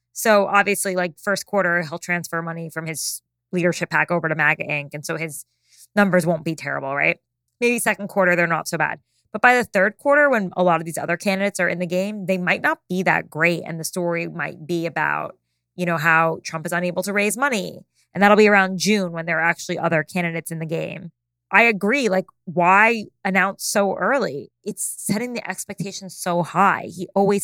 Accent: American